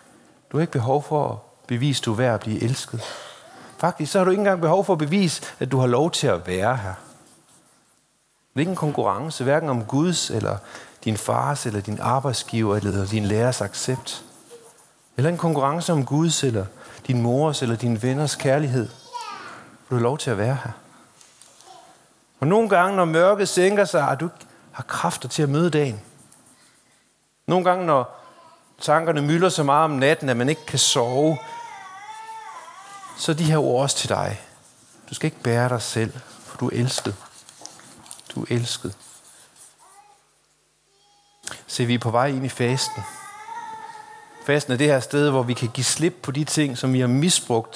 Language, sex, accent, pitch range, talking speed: Danish, male, native, 120-165 Hz, 180 wpm